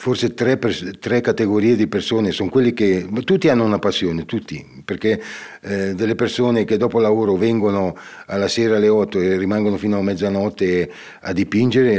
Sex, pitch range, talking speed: male, 100-120 Hz, 165 wpm